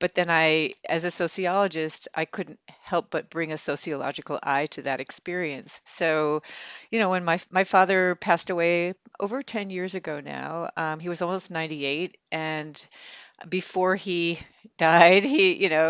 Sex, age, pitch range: female, 40-59, 160-190 Hz